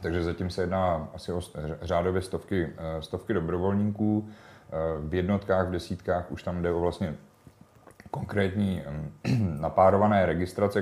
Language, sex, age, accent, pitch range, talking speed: Czech, male, 30-49, native, 85-95 Hz, 120 wpm